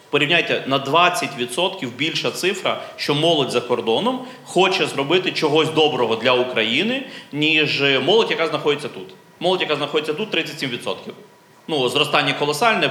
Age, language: 30-49, Ukrainian